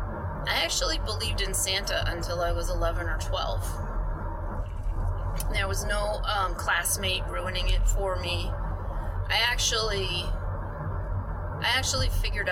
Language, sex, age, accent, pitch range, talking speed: English, female, 30-49, American, 85-95 Hz, 120 wpm